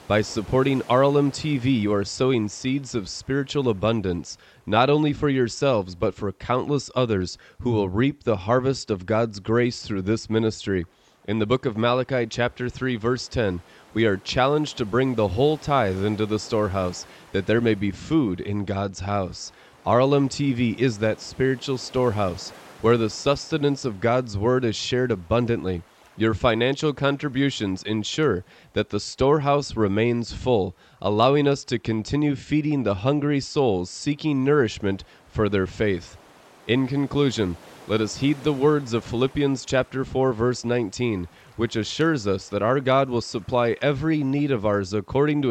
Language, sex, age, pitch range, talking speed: English, male, 30-49, 105-135 Hz, 160 wpm